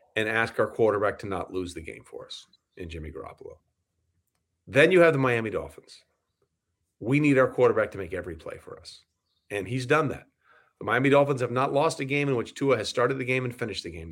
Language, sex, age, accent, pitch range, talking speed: English, male, 40-59, American, 100-140 Hz, 225 wpm